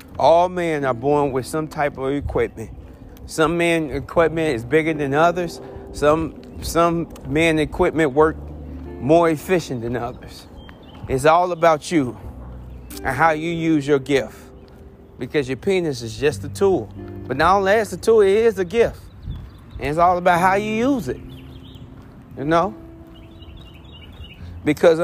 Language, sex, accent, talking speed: English, male, American, 150 wpm